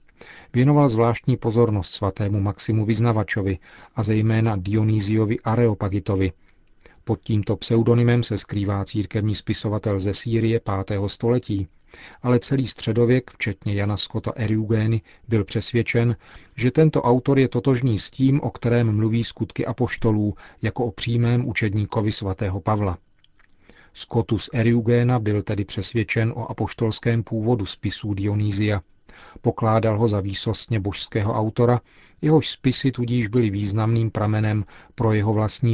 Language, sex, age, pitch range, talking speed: Czech, male, 40-59, 105-120 Hz, 125 wpm